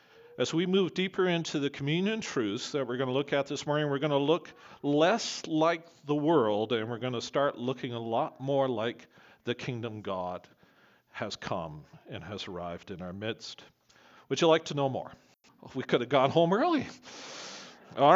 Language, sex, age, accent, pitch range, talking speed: English, male, 40-59, American, 135-190 Hz, 190 wpm